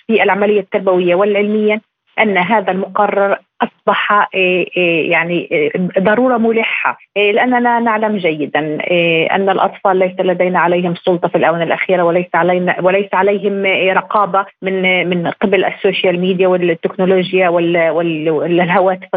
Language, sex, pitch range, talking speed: Arabic, female, 180-215 Hz, 110 wpm